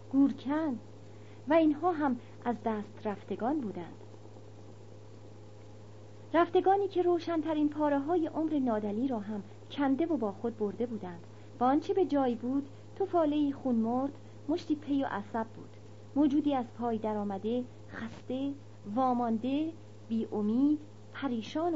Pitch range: 180-300 Hz